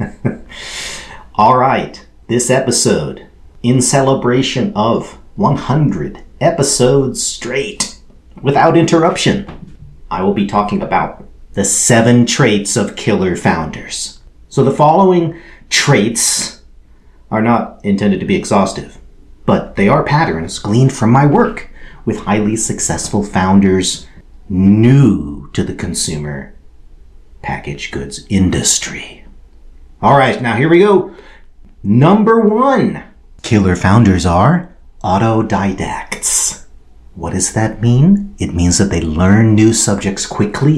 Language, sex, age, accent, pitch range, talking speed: English, male, 40-59, American, 80-130 Hz, 110 wpm